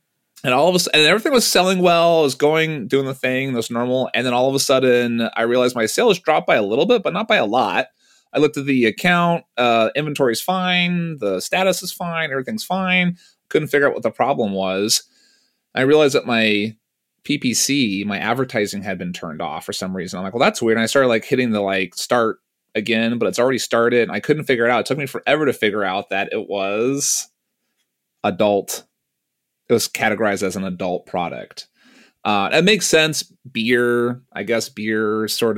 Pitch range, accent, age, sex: 110-160 Hz, American, 30-49, male